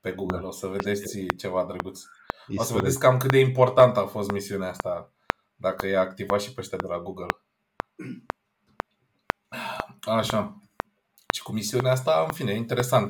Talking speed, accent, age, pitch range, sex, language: 155 wpm, native, 20-39, 100-125 Hz, male, Romanian